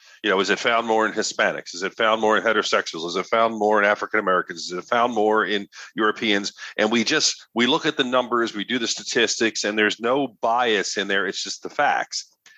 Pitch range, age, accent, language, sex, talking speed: 110-140 Hz, 40-59, American, English, male, 230 wpm